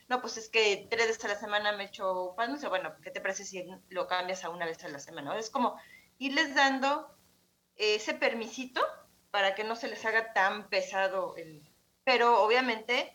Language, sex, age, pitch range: Spanish, female, 30-49, 190-245 Hz